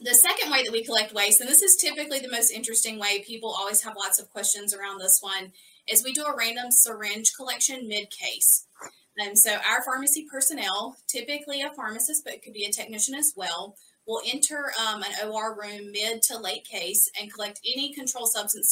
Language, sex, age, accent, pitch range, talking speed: English, female, 30-49, American, 200-245 Hz, 200 wpm